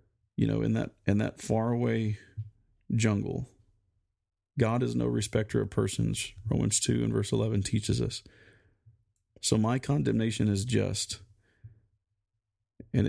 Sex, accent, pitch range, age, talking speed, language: male, American, 105-115 Hz, 40-59, 125 wpm, English